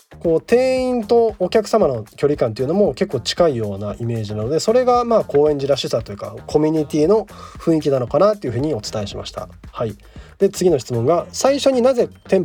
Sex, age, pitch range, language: male, 20-39, 125-205 Hz, Japanese